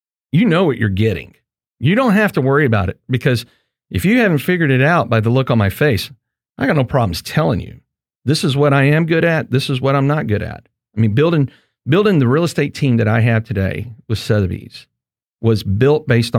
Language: English